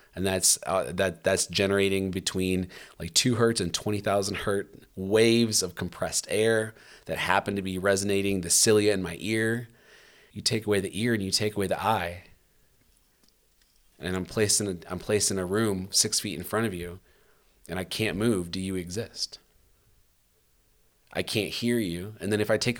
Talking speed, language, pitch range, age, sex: 185 wpm, English, 90-110 Hz, 30-49, male